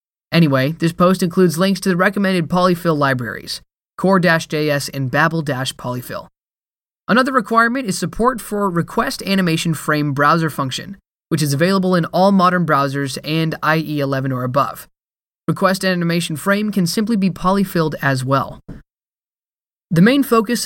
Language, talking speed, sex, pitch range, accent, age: English, 120 wpm, male, 150-195 Hz, American, 20-39